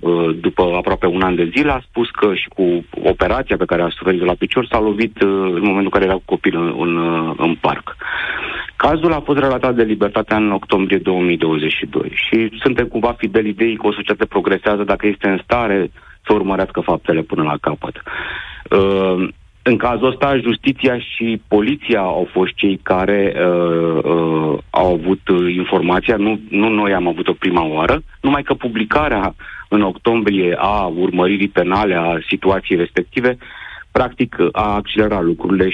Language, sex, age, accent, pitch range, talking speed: Romanian, male, 40-59, native, 90-115 Hz, 160 wpm